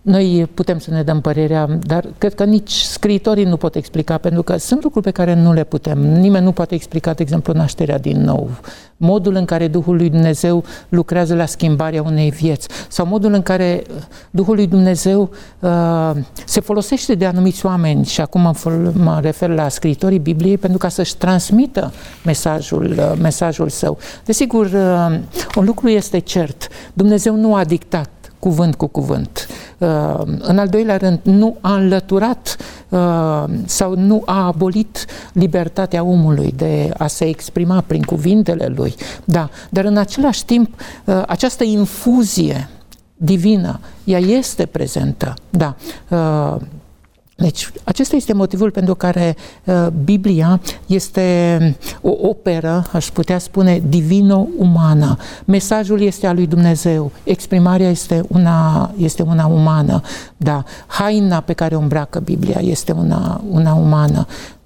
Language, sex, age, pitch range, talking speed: Romanian, male, 60-79, 160-195 Hz, 140 wpm